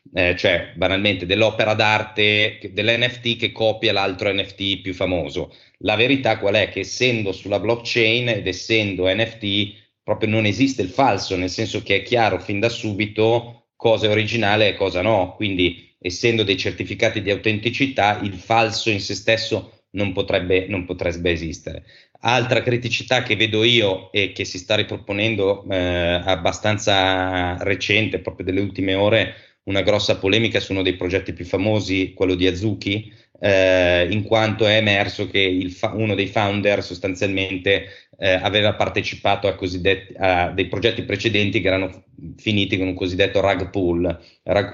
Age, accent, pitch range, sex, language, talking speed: 30-49, native, 95-110 Hz, male, Italian, 155 wpm